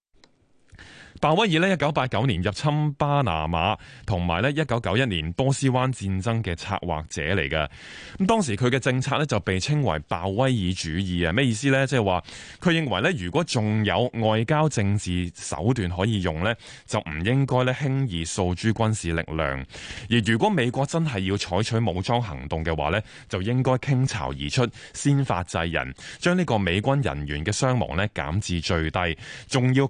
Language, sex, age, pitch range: Chinese, male, 20-39, 90-130 Hz